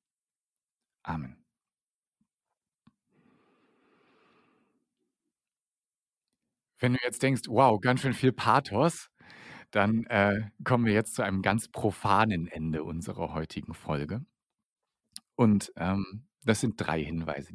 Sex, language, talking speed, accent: male, German, 100 wpm, German